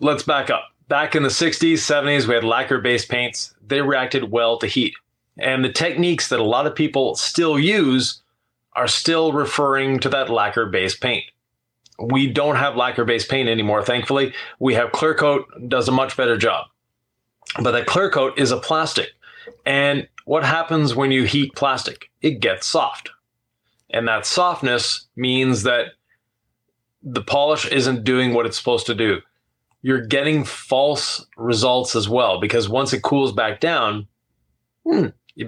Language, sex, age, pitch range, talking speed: English, male, 30-49, 120-145 Hz, 160 wpm